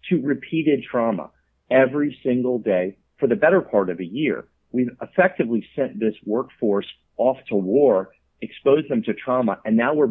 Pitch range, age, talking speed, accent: 100-135 Hz, 50-69, 165 wpm, American